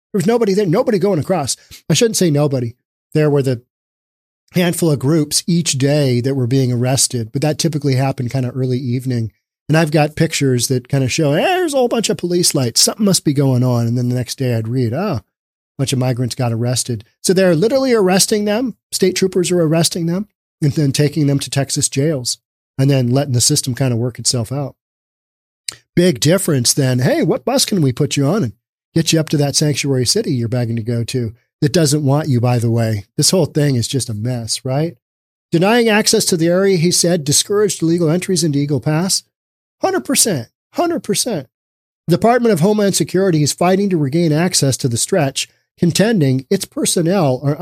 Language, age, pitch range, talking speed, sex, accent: English, 40-59, 130-185 Hz, 205 wpm, male, American